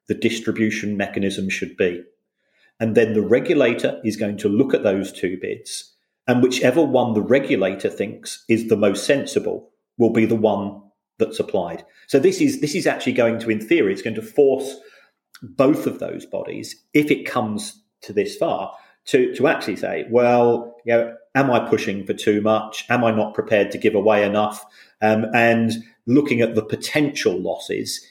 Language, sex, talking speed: English, male, 180 wpm